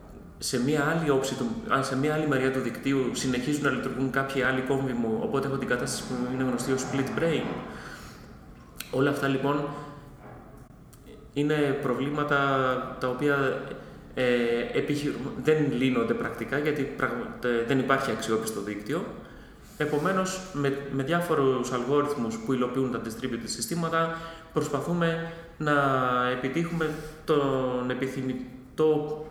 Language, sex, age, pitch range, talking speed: Greek, male, 30-49, 125-155 Hz, 110 wpm